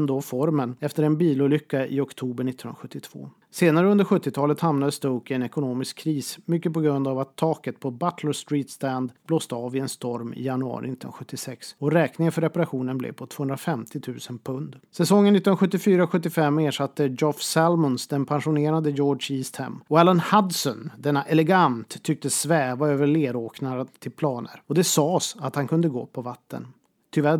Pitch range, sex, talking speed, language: 135-170 Hz, male, 160 wpm, Swedish